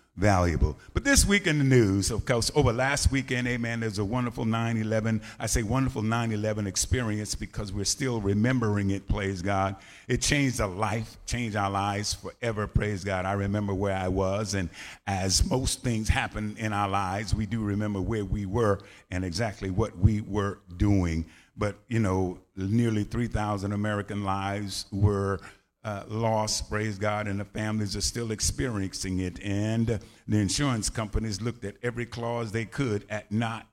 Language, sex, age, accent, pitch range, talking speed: English, male, 50-69, American, 95-115 Hz, 175 wpm